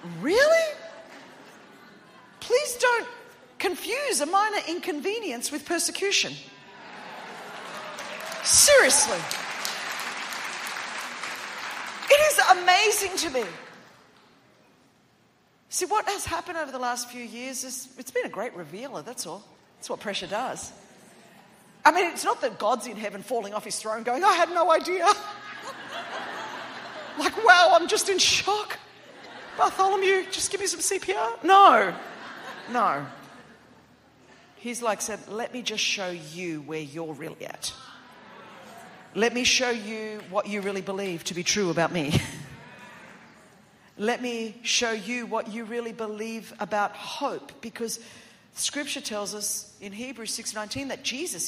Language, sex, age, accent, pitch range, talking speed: English, female, 40-59, Australian, 220-355 Hz, 130 wpm